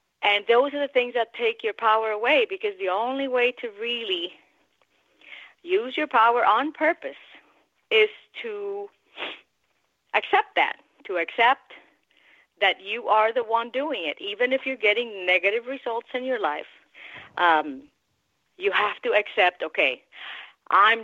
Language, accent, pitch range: English, American, 200-325 Hz